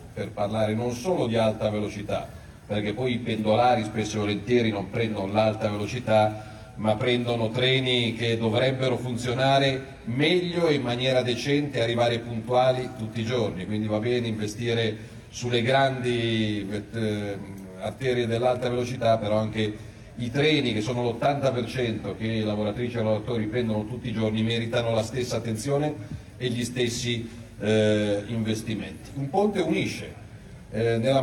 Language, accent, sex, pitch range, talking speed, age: Italian, native, male, 110-130 Hz, 145 wpm, 40-59